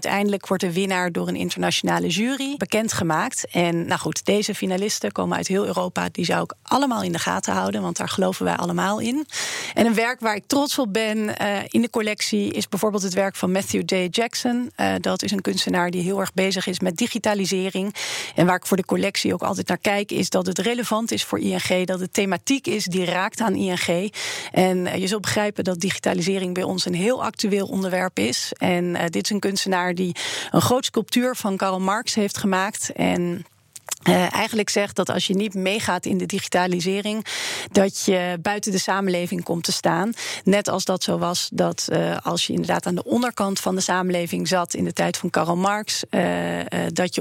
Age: 40-59